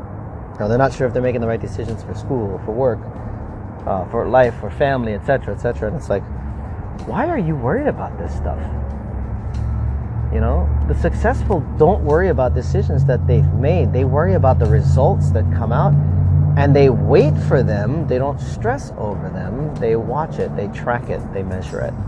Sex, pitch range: male, 95-150 Hz